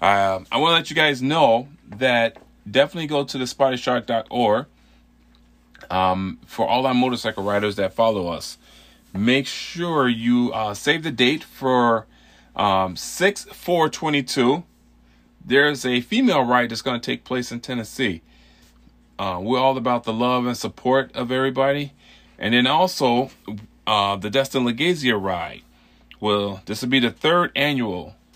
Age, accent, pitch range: 30-49, American, 95-130 Hz